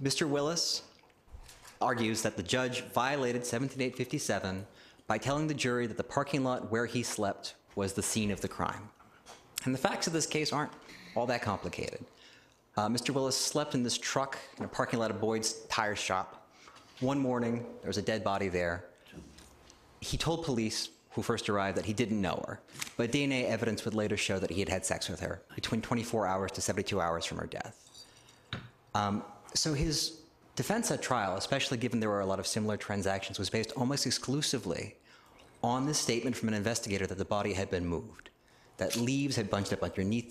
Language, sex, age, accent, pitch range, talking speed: English, male, 30-49, American, 100-130 Hz, 190 wpm